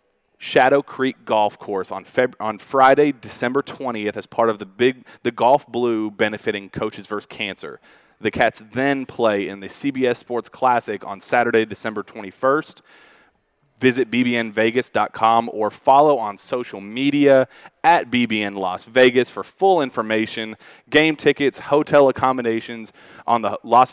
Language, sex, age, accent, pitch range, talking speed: English, male, 30-49, American, 110-135 Hz, 135 wpm